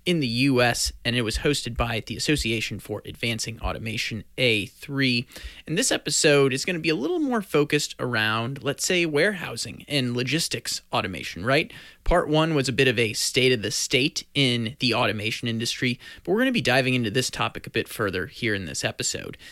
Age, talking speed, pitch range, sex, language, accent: 30-49, 195 wpm, 120-150 Hz, male, English, American